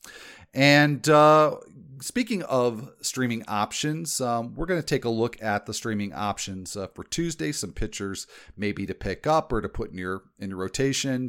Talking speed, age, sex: 175 wpm, 40-59, male